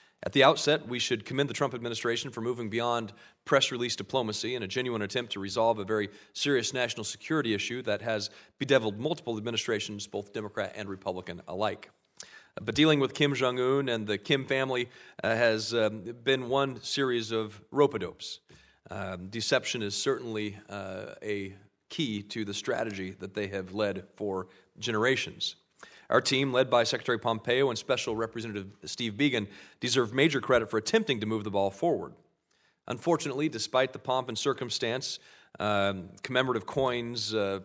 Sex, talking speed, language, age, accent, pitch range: male, 155 wpm, English, 40-59, American, 105-130 Hz